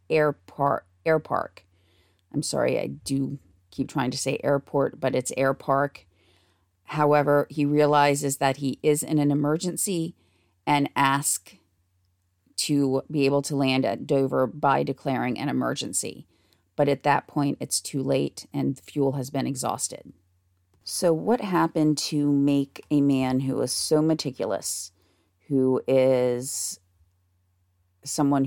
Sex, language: female, English